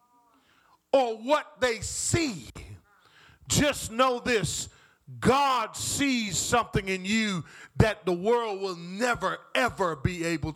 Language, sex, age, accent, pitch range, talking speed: English, male, 40-59, American, 165-240 Hz, 115 wpm